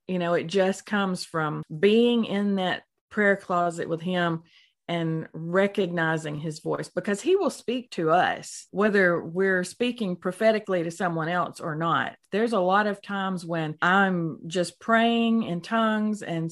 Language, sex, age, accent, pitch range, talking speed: English, female, 40-59, American, 170-215 Hz, 160 wpm